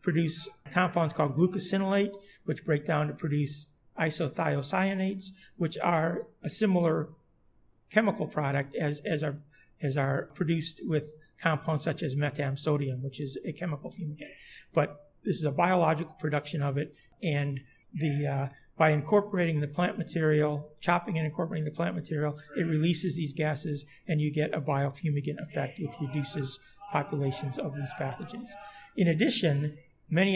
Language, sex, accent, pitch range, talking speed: English, male, American, 145-175 Hz, 145 wpm